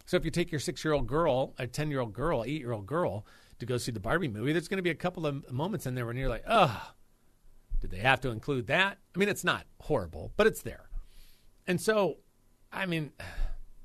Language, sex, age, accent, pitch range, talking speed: English, male, 40-59, American, 120-170 Hz, 215 wpm